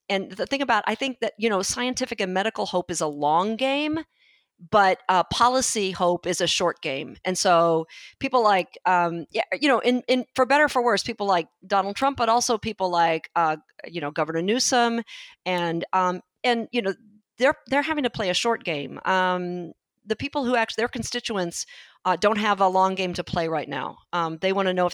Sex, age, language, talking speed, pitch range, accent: female, 40-59, English, 215 wpm, 170-230 Hz, American